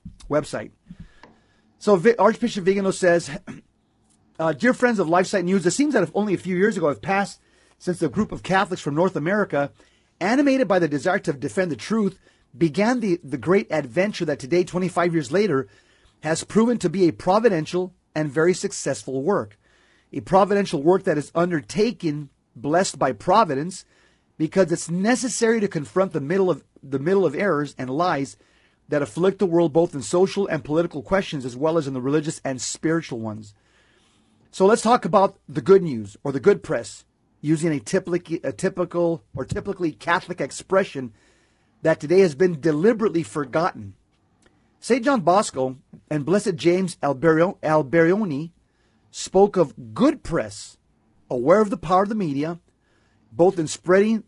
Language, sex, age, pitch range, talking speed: English, male, 40-59, 145-195 Hz, 160 wpm